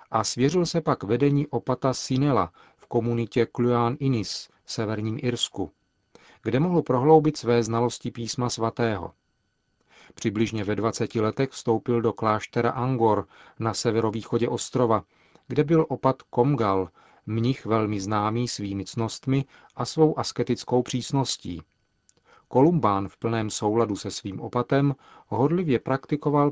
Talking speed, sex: 120 wpm, male